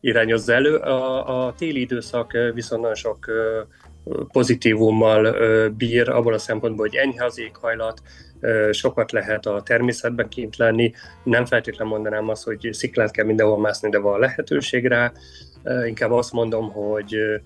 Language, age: Hungarian, 30-49